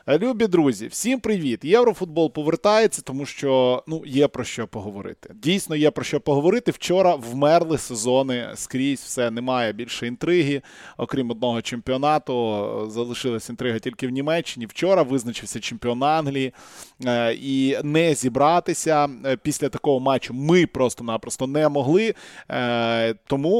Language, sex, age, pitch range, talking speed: Ukrainian, male, 20-39, 120-155 Hz, 125 wpm